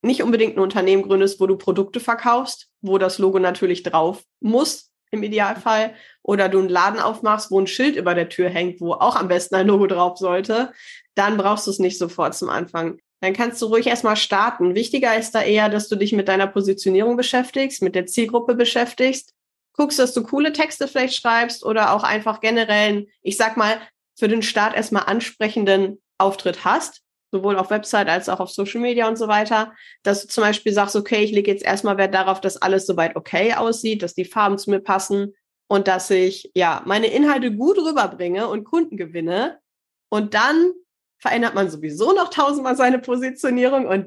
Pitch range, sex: 190-235 Hz, female